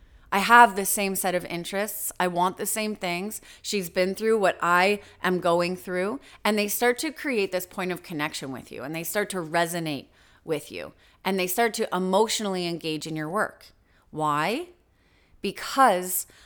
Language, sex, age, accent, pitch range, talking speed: English, female, 30-49, American, 175-230 Hz, 180 wpm